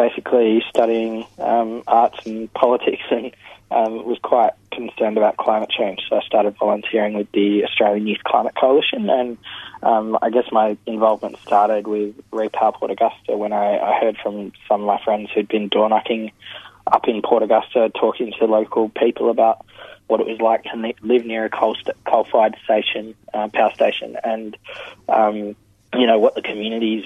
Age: 20-39